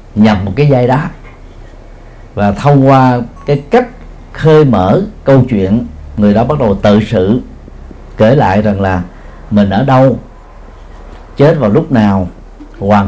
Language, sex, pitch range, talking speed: Vietnamese, male, 100-135 Hz, 145 wpm